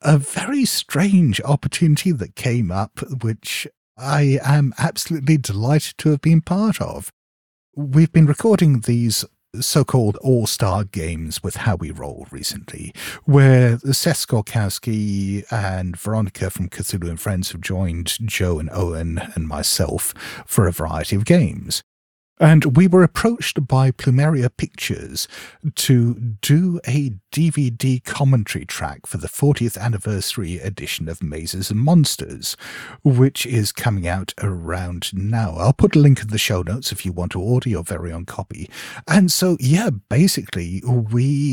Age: 50-69